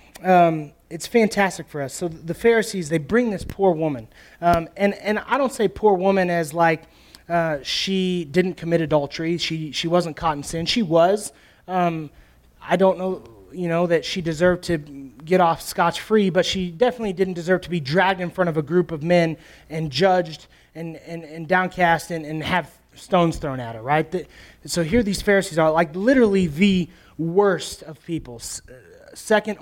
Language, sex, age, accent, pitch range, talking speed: English, male, 30-49, American, 150-185 Hz, 185 wpm